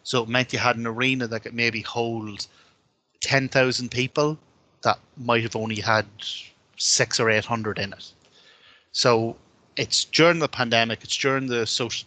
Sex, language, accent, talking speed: male, English, Irish, 160 wpm